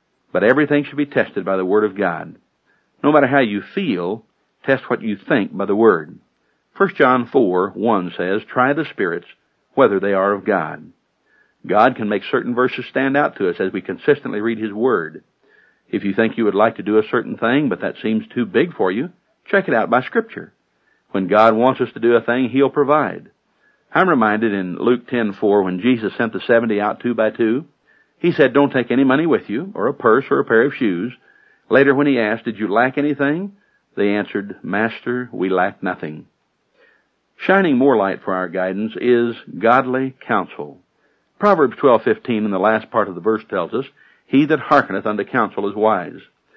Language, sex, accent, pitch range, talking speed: English, male, American, 105-130 Hz, 200 wpm